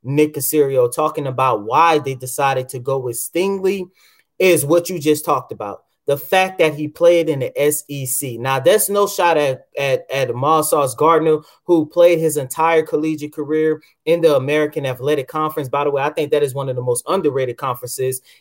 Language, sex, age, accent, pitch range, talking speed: English, male, 30-49, American, 145-200 Hz, 190 wpm